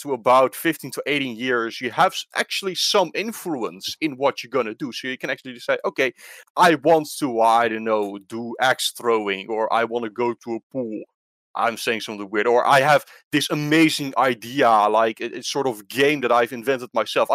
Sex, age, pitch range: male, 30-49, 115-140 Hz